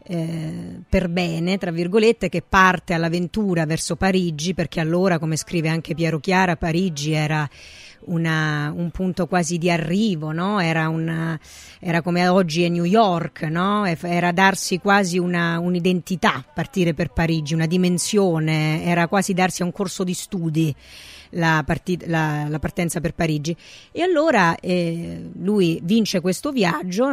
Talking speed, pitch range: 130 wpm, 160-185 Hz